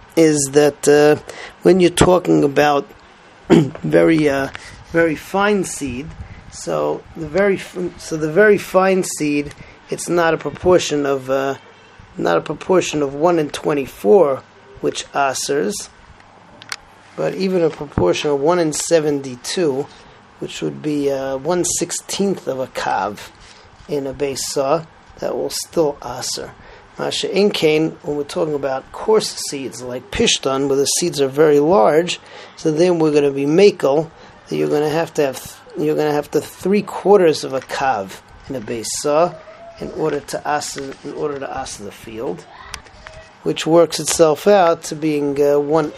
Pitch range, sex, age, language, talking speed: 140-175 Hz, male, 40-59, English, 160 wpm